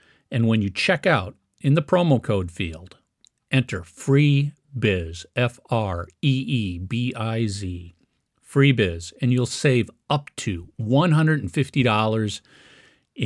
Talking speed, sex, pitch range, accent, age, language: 90 wpm, male, 110-140 Hz, American, 50-69, English